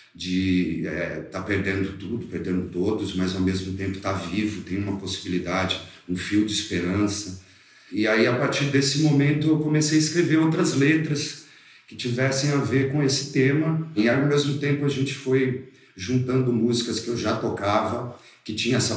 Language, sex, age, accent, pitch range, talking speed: Portuguese, male, 40-59, Brazilian, 95-120 Hz, 180 wpm